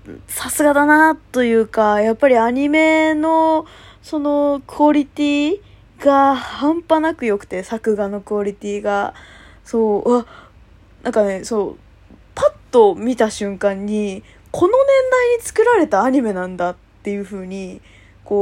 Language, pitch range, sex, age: Japanese, 200-305 Hz, female, 20-39